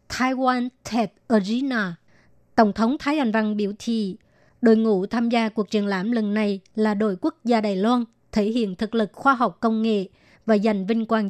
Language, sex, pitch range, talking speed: Vietnamese, male, 210-235 Hz, 195 wpm